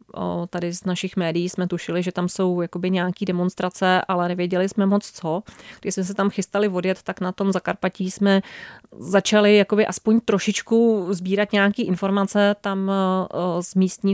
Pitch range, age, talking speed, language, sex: 175-200 Hz, 30-49, 155 wpm, Czech, female